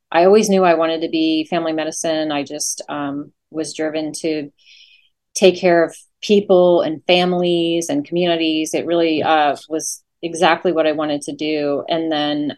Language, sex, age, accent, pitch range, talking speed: English, female, 30-49, American, 160-185 Hz, 165 wpm